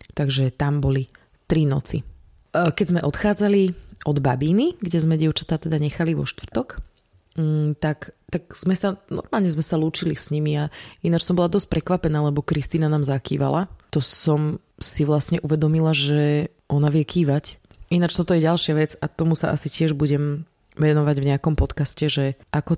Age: 20-39